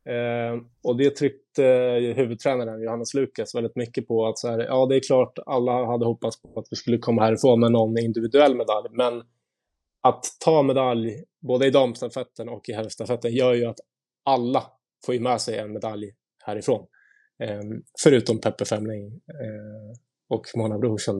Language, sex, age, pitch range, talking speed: English, male, 20-39, 115-135 Hz, 165 wpm